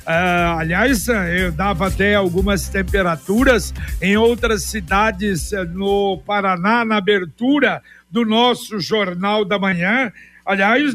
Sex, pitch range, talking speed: male, 200-245 Hz, 105 wpm